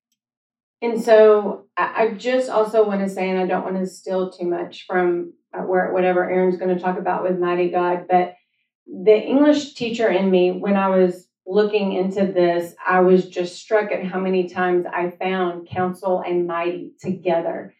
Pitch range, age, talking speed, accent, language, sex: 180-200 Hz, 30-49, 180 wpm, American, English, female